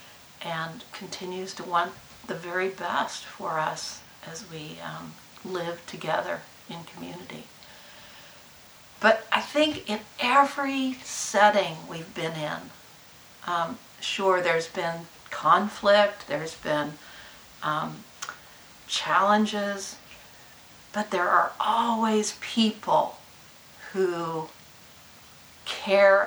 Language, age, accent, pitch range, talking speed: English, 60-79, American, 165-205 Hz, 95 wpm